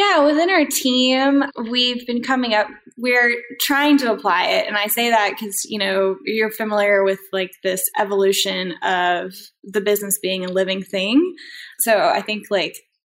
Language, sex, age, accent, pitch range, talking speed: English, female, 10-29, American, 195-245 Hz, 170 wpm